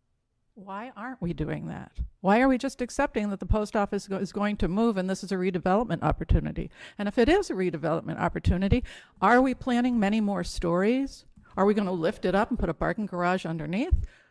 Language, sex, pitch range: English, female, 180-225 Hz